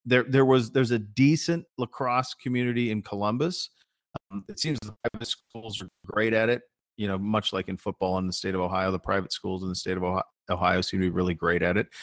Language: English